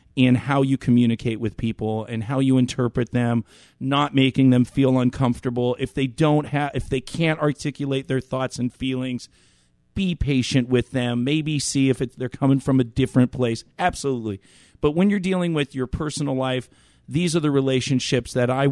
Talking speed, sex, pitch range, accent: 185 wpm, male, 125-150 Hz, American